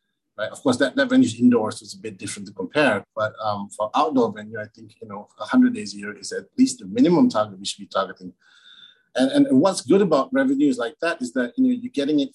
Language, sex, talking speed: English, male, 265 wpm